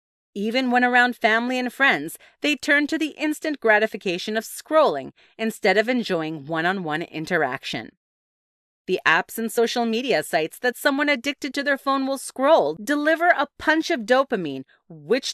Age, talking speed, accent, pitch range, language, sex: 30-49, 155 wpm, American, 180-260 Hz, English, female